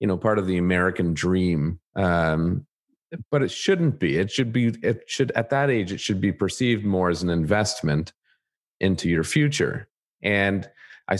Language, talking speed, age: English, 175 wpm, 40-59